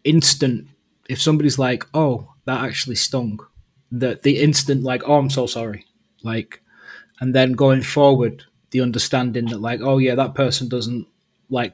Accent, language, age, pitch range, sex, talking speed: British, English, 20-39, 125-140 Hz, male, 160 wpm